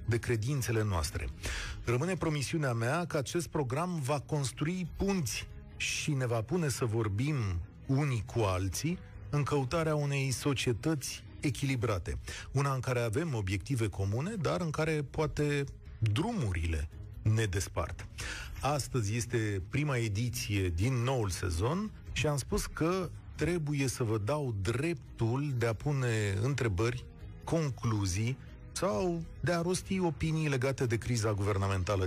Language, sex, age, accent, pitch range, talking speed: Romanian, male, 40-59, native, 100-140 Hz, 130 wpm